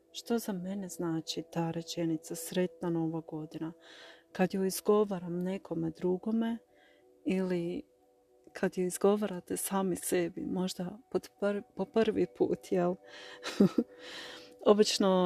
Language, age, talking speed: Croatian, 40-59, 100 wpm